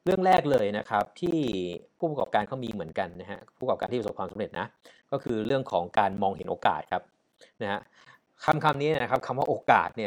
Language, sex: Thai, male